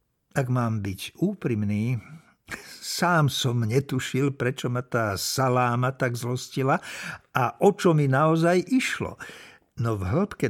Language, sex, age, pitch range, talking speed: Slovak, male, 50-69, 120-160 Hz, 125 wpm